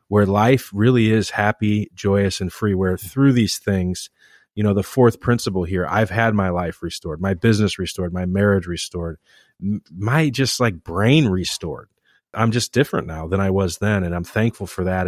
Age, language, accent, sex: 30-49, English, American, male